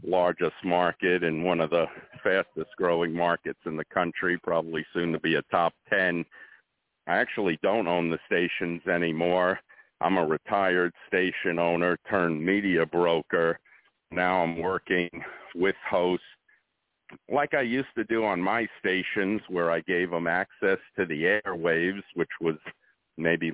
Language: English